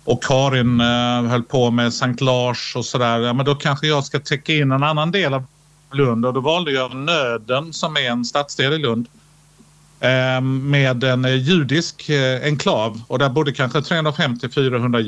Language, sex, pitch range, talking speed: English, male, 120-150 Hz, 165 wpm